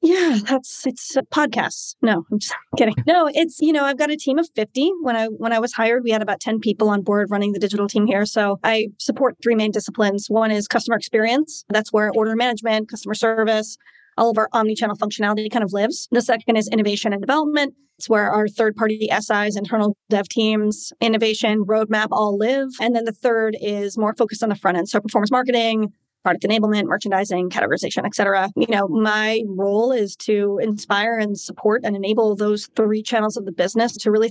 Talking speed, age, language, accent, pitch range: 200 wpm, 30-49, English, American, 210-235 Hz